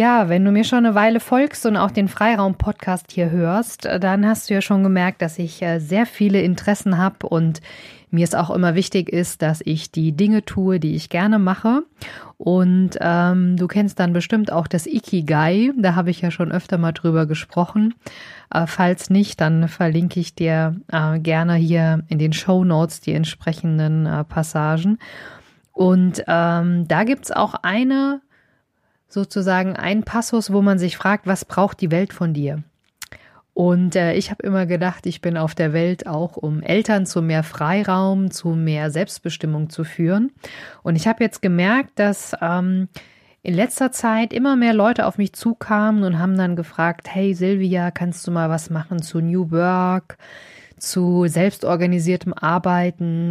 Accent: German